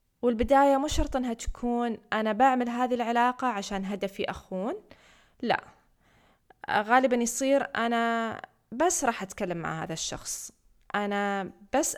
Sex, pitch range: female, 200-260 Hz